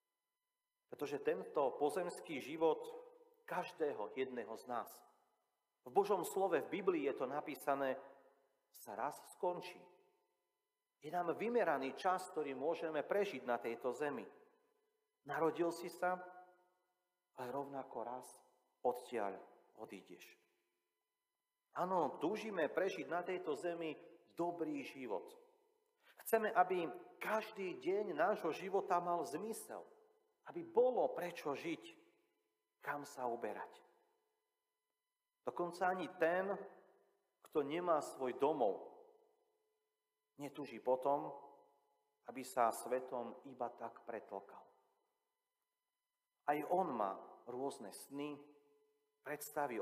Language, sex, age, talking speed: Slovak, male, 40-59, 100 wpm